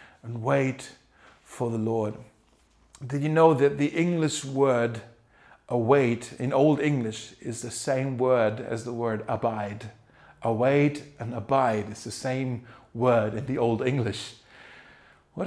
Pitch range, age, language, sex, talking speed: 120-155 Hz, 30-49, German, male, 140 wpm